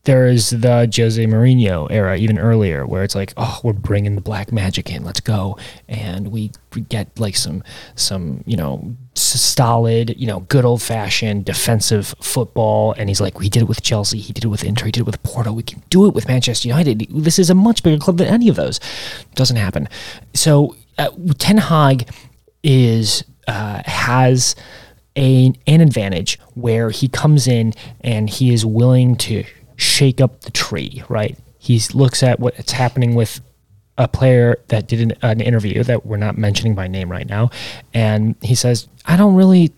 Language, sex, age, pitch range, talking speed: English, male, 30-49, 110-135 Hz, 185 wpm